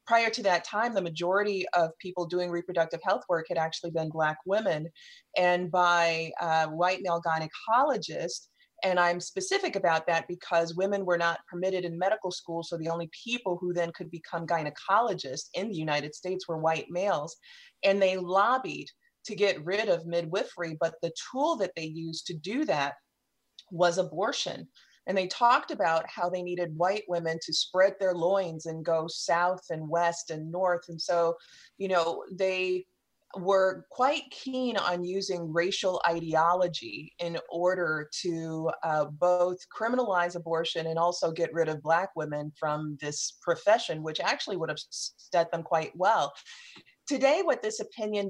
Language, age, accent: English, 30-49, American